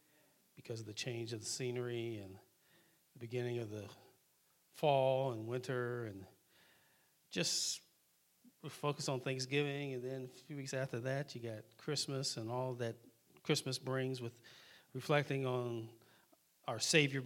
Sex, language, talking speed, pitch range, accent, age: male, English, 140 wpm, 115-150 Hz, American, 40-59